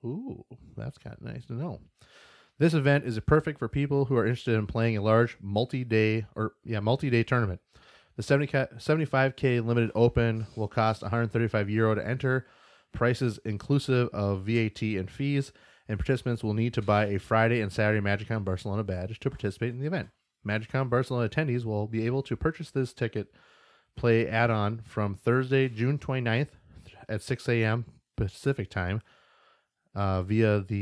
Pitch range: 105-120 Hz